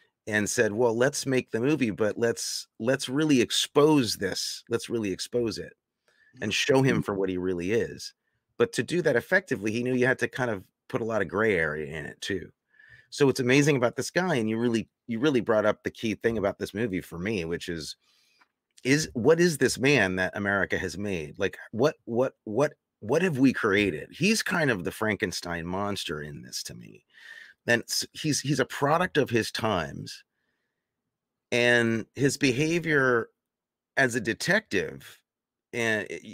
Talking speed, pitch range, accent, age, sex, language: 185 wpm, 100-135 Hz, American, 30-49, male, English